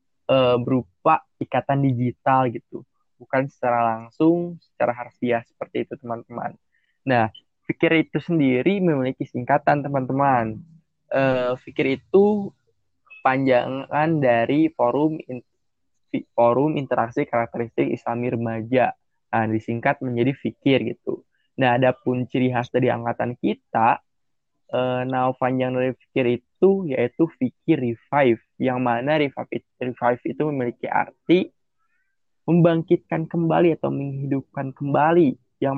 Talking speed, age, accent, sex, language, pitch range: 110 wpm, 20-39, native, male, Indonesian, 120-150 Hz